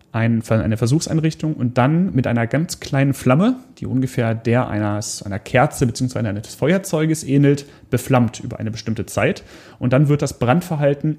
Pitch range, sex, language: 115-145 Hz, male, German